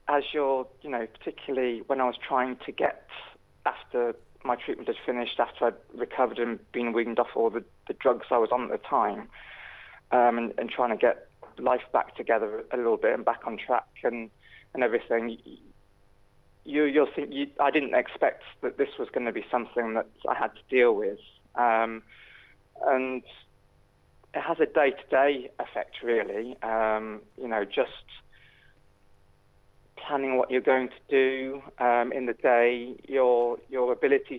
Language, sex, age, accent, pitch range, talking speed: English, male, 20-39, British, 115-140 Hz, 170 wpm